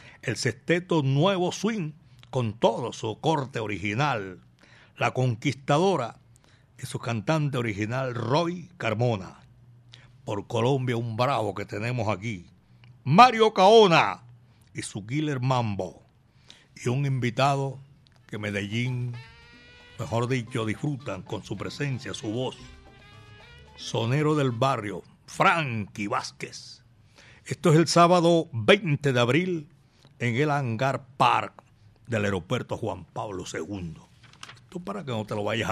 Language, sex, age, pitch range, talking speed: Spanish, male, 60-79, 115-150 Hz, 120 wpm